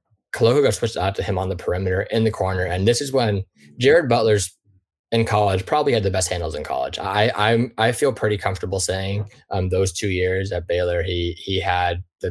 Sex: male